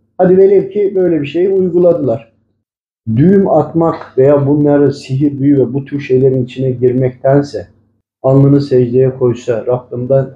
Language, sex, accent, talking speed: Turkish, male, native, 135 wpm